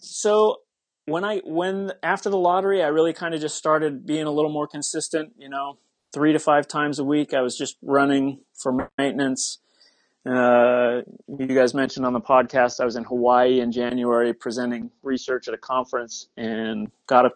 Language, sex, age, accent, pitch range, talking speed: English, male, 30-49, American, 120-150 Hz, 185 wpm